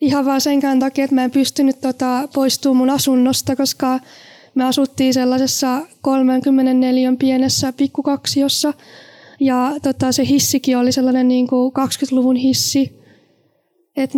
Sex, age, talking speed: female, 20-39, 125 wpm